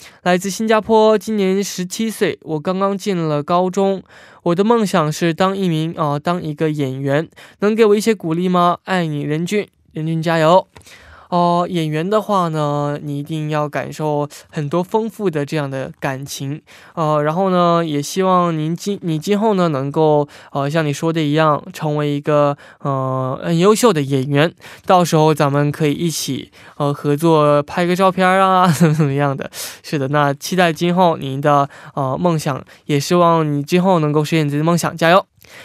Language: Korean